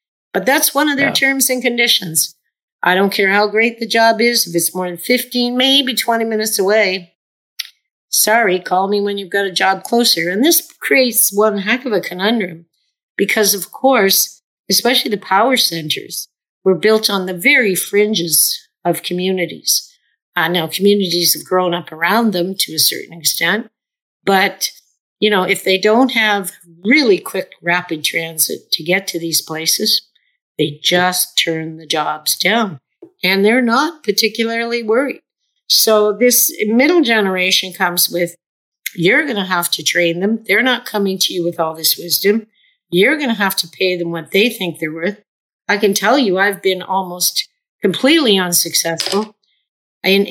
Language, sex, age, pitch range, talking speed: English, female, 50-69, 175-230 Hz, 165 wpm